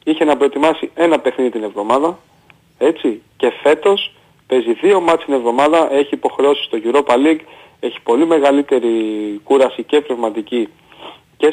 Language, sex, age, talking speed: Greek, male, 30-49, 140 wpm